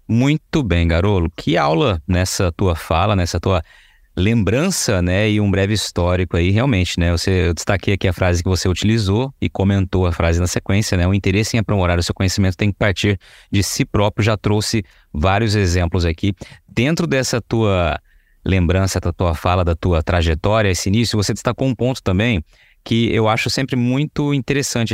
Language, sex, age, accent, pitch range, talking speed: Portuguese, male, 20-39, Brazilian, 90-115 Hz, 185 wpm